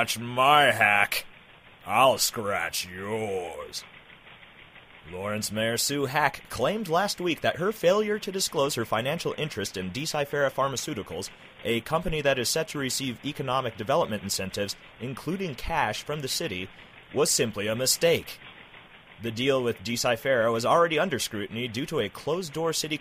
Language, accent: English, American